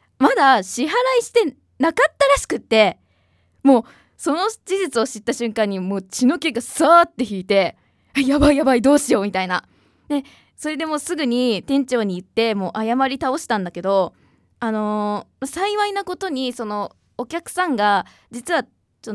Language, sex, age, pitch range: Japanese, female, 20-39, 195-285 Hz